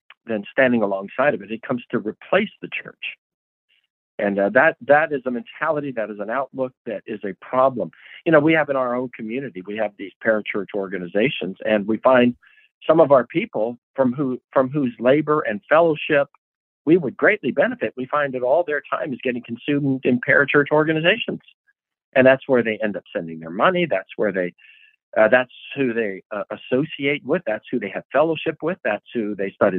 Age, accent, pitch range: 50-69, American, 110-140 Hz